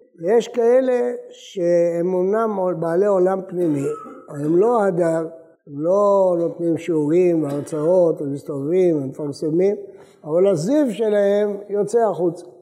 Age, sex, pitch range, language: 60-79, male, 165-225 Hz, English